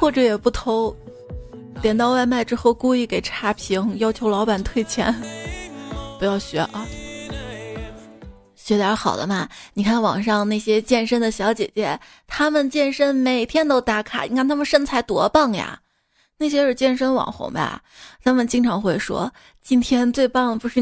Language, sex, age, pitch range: Chinese, female, 20-39, 210-255 Hz